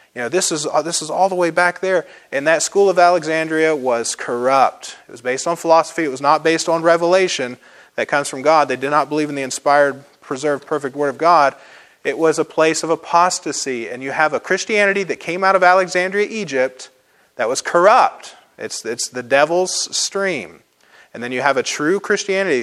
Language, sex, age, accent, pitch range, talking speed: English, male, 30-49, American, 135-175 Hz, 205 wpm